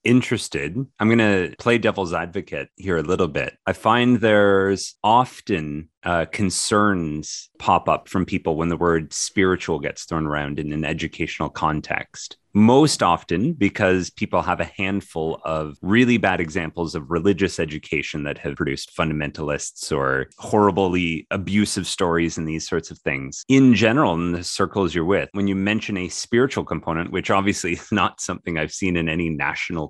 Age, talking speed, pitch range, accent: 30-49, 165 wpm, 80-105 Hz, American